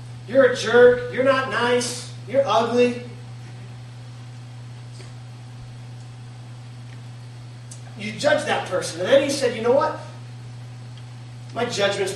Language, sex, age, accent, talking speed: English, male, 30-49, American, 105 wpm